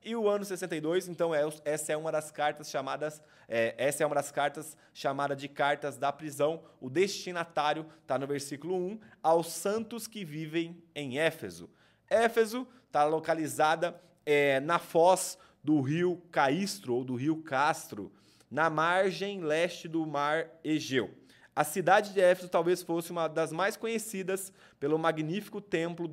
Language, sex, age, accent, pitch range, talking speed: Portuguese, male, 20-39, Brazilian, 145-185 Hz, 150 wpm